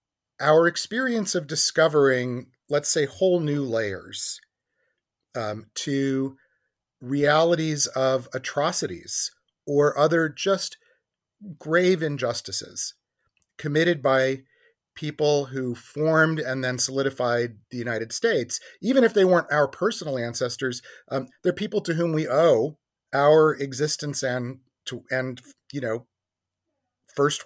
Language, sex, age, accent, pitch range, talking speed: English, male, 30-49, American, 130-175 Hz, 110 wpm